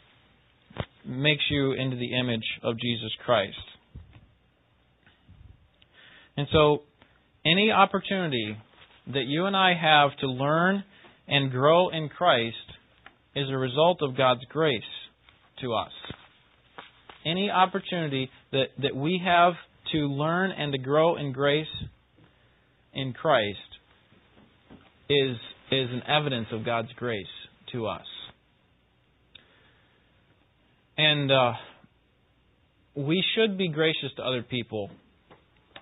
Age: 40-59